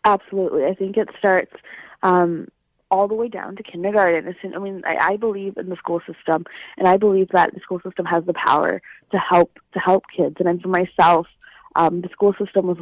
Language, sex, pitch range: English, female, 170-195 Hz